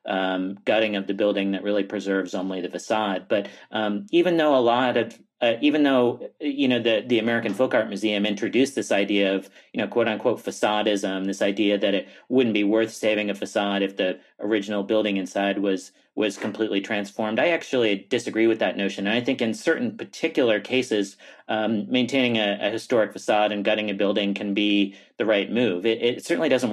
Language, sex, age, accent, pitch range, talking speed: English, male, 40-59, American, 100-115 Hz, 200 wpm